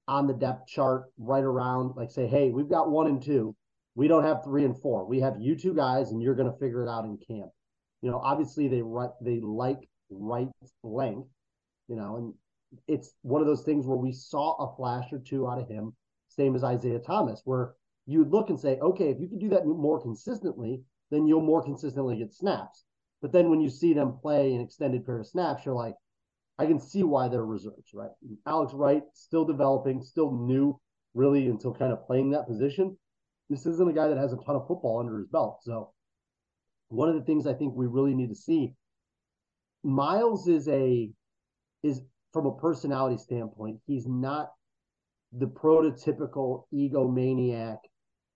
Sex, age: male, 30-49